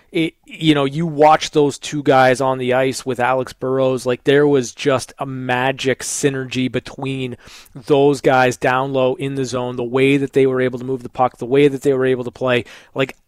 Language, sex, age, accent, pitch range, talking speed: English, male, 20-39, American, 130-165 Hz, 210 wpm